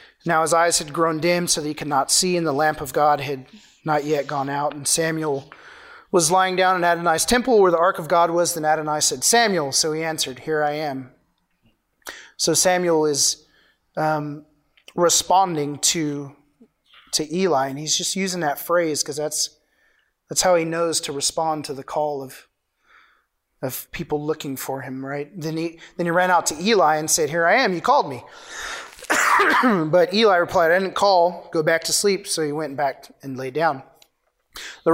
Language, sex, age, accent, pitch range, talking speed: English, male, 30-49, American, 145-175 Hz, 190 wpm